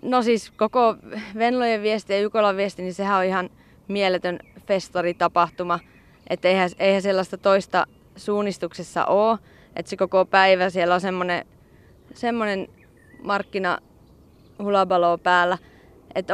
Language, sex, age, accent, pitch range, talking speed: Finnish, female, 30-49, native, 175-225 Hz, 120 wpm